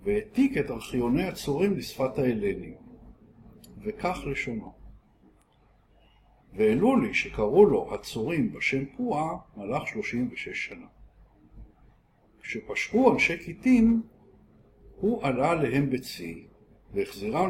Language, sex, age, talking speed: Hebrew, male, 60-79, 90 wpm